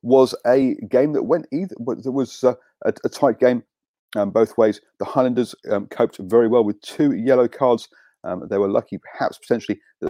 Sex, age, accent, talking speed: male, 40-59, British, 200 wpm